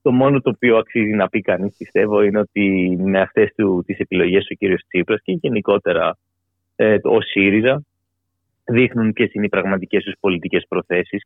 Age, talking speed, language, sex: 30-49, 170 wpm, Greek, male